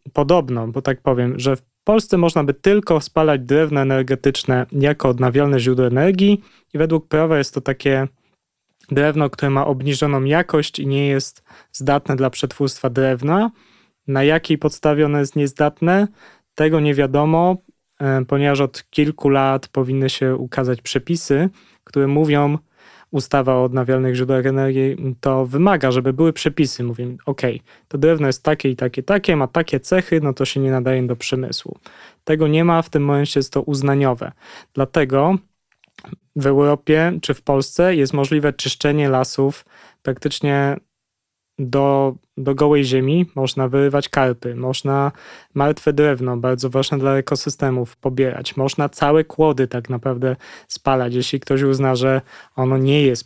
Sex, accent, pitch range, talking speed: male, native, 130-150 Hz, 150 wpm